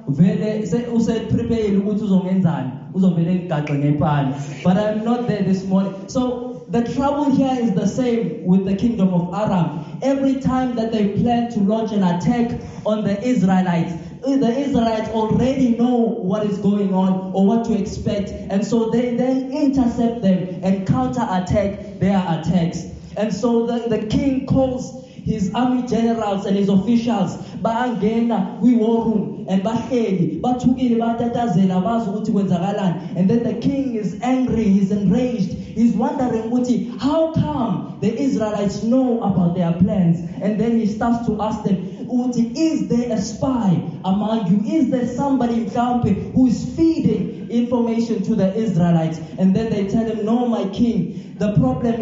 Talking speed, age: 135 wpm, 20-39